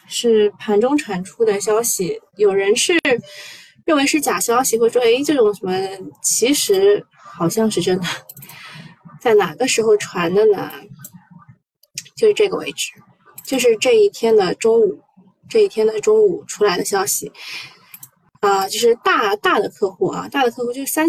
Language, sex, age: Chinese, female, 20-39